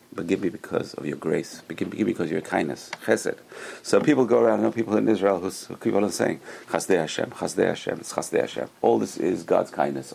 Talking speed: 225 wpm